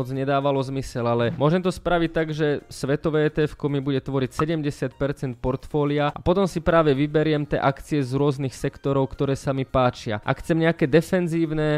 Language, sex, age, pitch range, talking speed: Slovak, male, 20-39, 130-150 Hz, 170 wpm